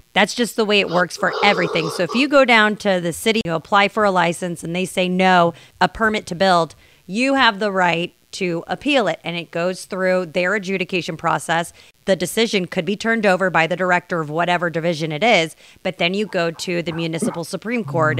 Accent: American